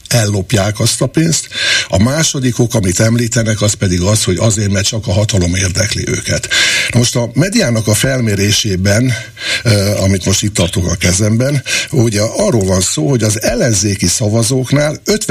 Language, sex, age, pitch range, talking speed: Hungarian, male, 60-79, 100-130 Hz, 150 wpm